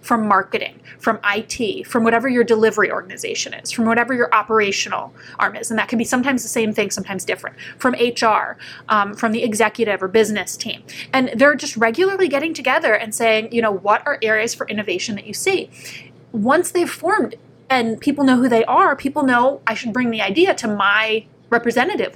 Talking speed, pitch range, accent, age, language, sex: 195 wpm, 215-260 Hz, American, 20-39, English, female